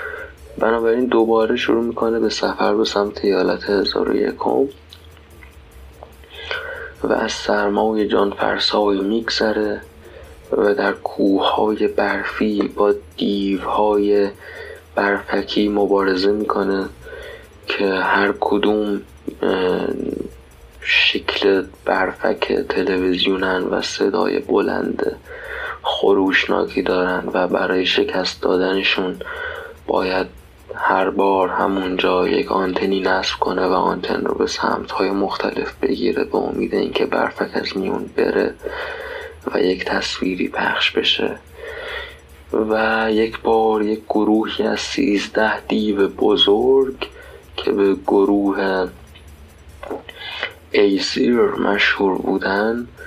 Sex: male